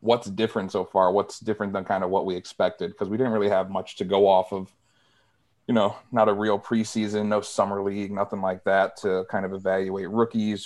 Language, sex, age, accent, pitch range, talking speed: English, male, 30-49, American, 95-110 Hz, 220 wpm